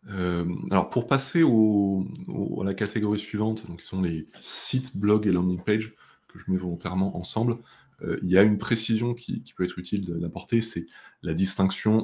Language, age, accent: French, 20-39, French